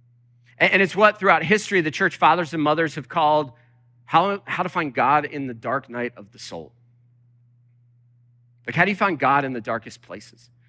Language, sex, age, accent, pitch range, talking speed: English, male, 40-59, American, 120-165 Hz, 190 wpm